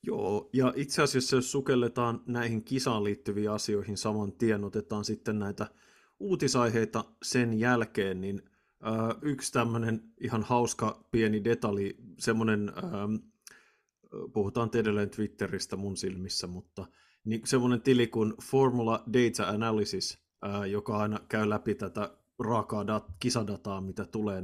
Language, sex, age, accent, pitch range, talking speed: Finnish, male, 30-49, native, 105-120 Hz, 120 wpm